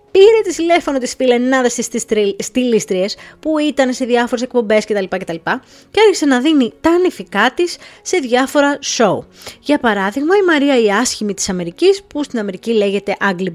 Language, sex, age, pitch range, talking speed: Greek, female, 20-39, 200-275 Hz, 160 wpm